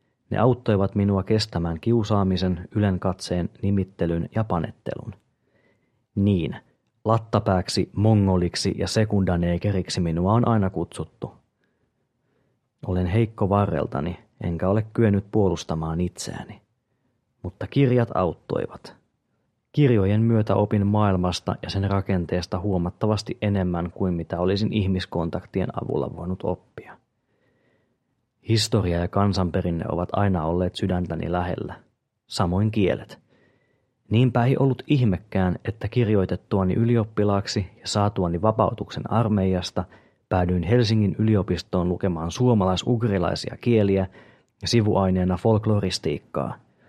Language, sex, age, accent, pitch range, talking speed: Finnish, male, 30-49, native, 90-115 Hz, 95 wpm